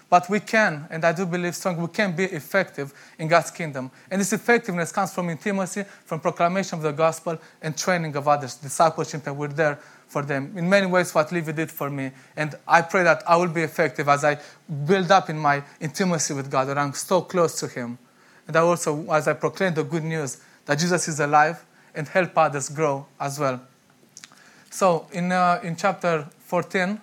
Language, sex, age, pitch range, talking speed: English, male, 20-39, 150-190 Hz, 205 wpm